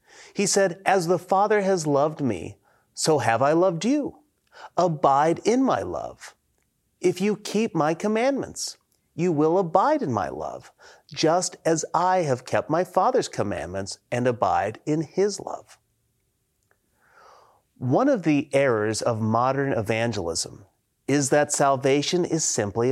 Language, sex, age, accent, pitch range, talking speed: English, male, 40-59, American, 125-185 Hz, 140 wpm